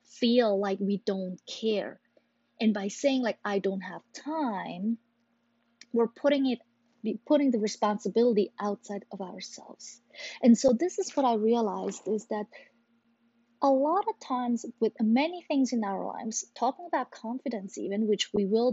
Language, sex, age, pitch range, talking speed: English, female, 30-49, 195-235 Hz, 155 wpm